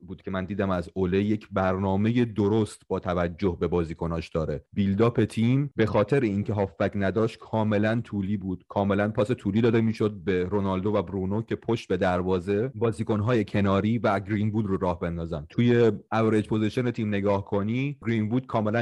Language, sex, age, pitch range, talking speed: Persian, male, 30-49, 90-110 Hz, 180 wpm